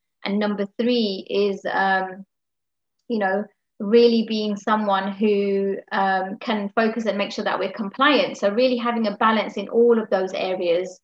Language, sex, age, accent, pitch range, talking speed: English, female, 30-49, British, 195-220 Hz, 165 wpm